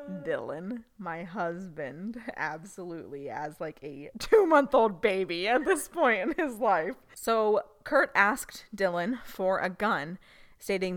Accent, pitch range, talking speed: American, 175-240 Hz, 125 wpm